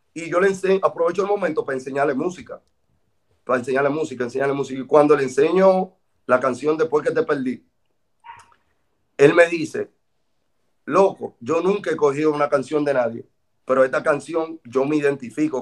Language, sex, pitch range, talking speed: Spanish, male, 140-175 Hz, 165 wpm